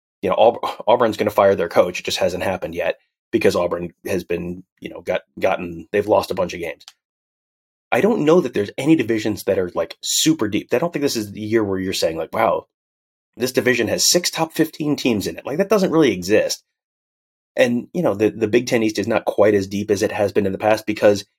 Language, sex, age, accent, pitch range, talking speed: English, male, 30-49, American, 100-140 Hz, 240 wpm